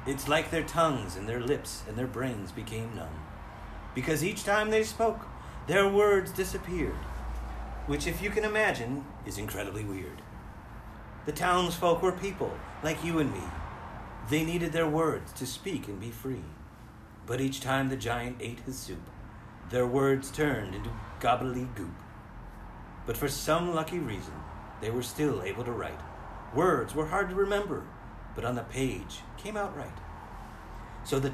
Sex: male